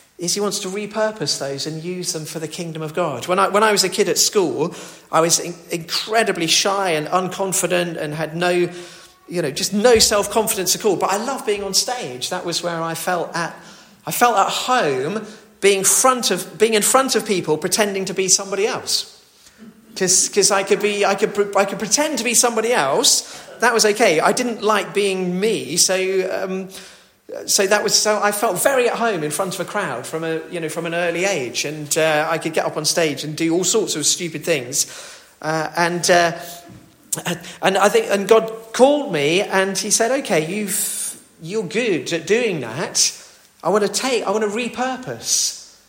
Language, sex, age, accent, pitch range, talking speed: English, male, 40-59, British, 170-215 Hz, 205 wpm